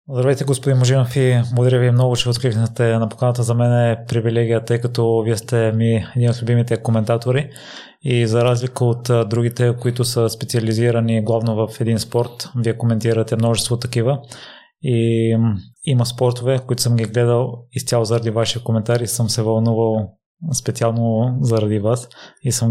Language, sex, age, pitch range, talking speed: Bulgarian, male, 20-39, 115-125 Hz, 155 wpm